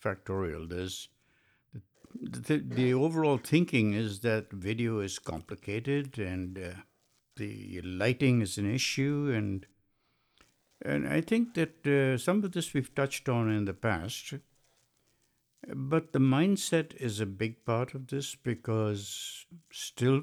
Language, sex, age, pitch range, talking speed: English, male, 60-79, 105-140 Hz, 135 wpm